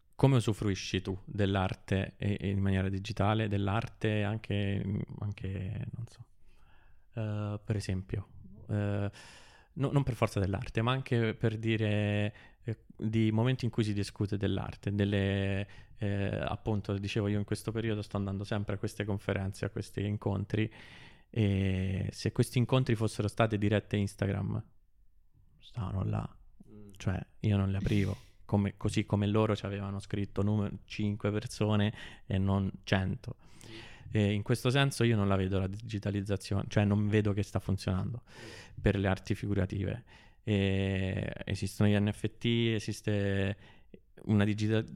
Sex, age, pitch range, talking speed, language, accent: male, 20-39, 100-110 Hz, 145 wpm, Italian, native